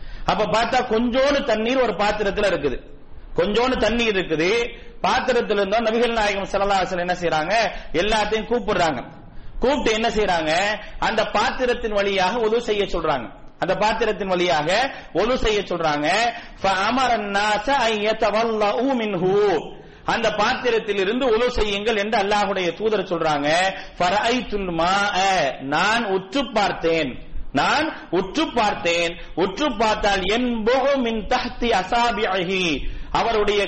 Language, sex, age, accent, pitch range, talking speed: English, male, 40-59, Indian, 200-240 Hz, 105 wpm